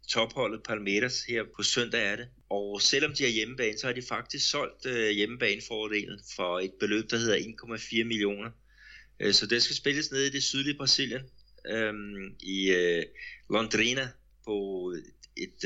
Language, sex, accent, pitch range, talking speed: Danish, male, native, 95-120 Hz, 155 wpm